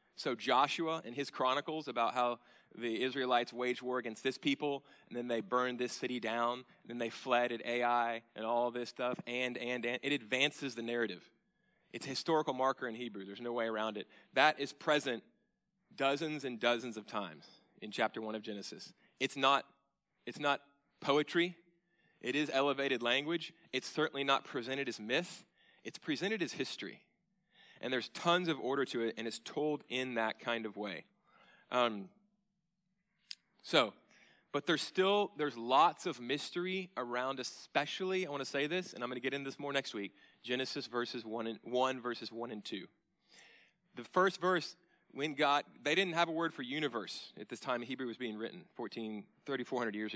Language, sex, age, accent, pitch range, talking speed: English, male, 30-49, American, 120-150 Hz, 180 wpm